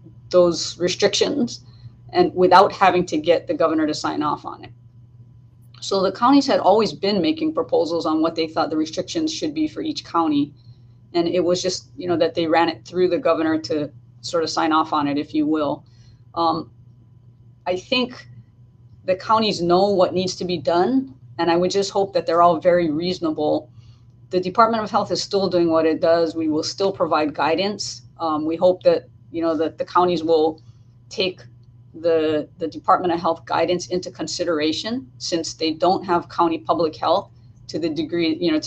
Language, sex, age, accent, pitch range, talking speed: English, female, 30-49, American, 145-180 Hz, 190 wpm